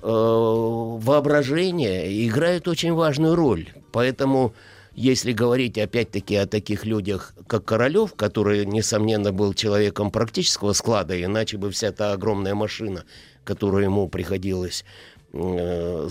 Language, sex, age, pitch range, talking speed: Russian, male, 60-79, 100-125 Hz, 110 wpm